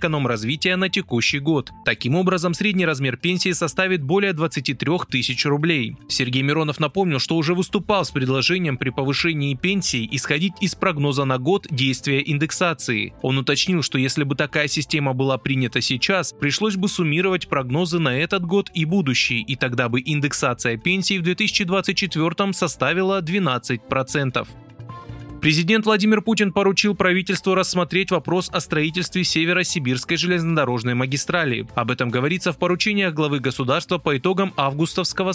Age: 20-39